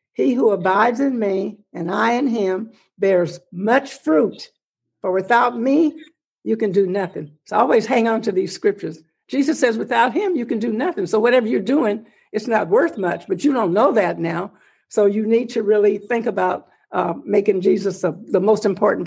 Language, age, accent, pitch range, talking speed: English, 60-79, American, 195-240 Hz, 195 wpm